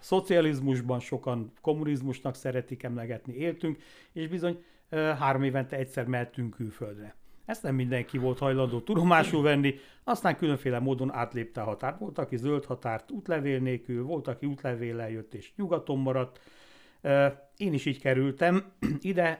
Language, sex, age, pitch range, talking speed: Hungarian, male, 60-79, 120-155 Hz, 135 wpm